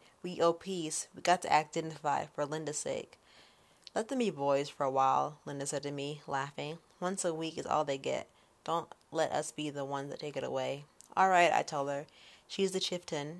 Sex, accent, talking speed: female, American, 215 wpm